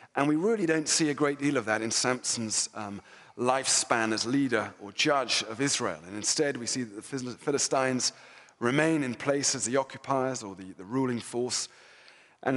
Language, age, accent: English, 30-49, British